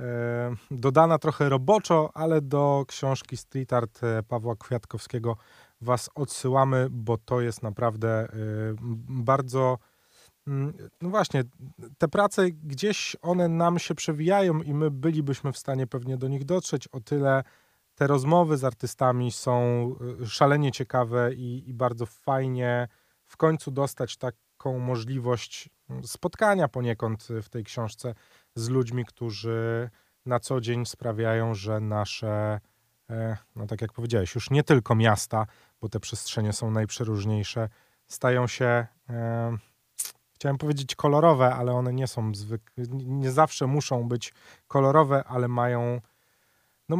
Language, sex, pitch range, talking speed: Polish, male, 115-140 Hz, 125 wpm